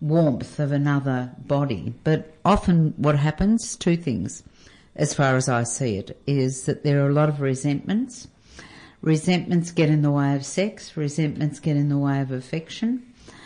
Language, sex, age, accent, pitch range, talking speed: English, female, 50-69, Australian, 135-165 Hz, 170 wpm